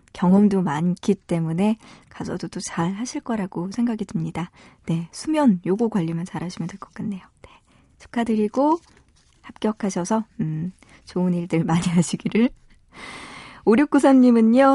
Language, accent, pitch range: Korean, native, 175-230 Hz